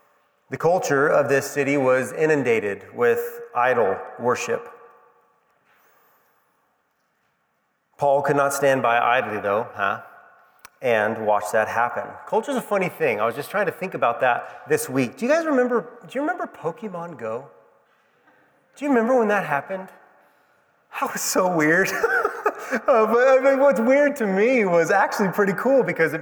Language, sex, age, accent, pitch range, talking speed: English, male, 30-49, American, 125-180 Hz, 160 wpm